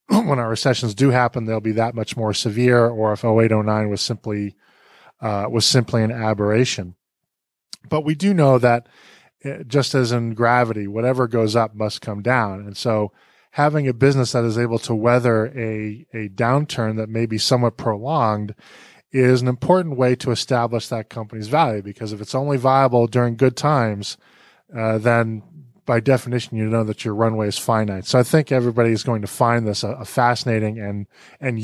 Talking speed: 175 wpm